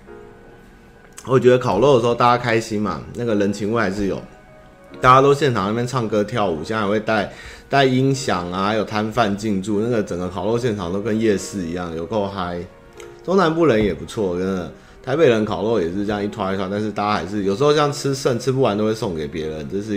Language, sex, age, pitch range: Chinese, male, 20-39, 100-125 Hz